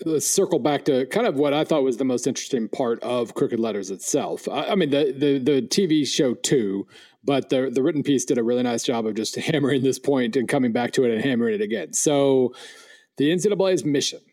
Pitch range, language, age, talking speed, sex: 120-155 Hz, English, 40-59, 225 wpm, male